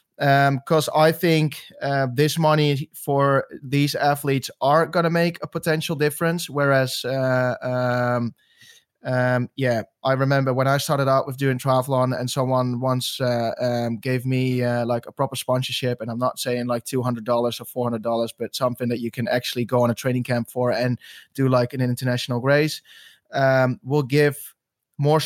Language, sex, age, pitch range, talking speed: English, male, 20-39, 125-145 Hz, 175 wpm